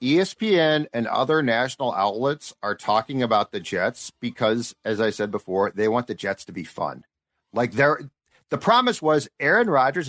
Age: 50-69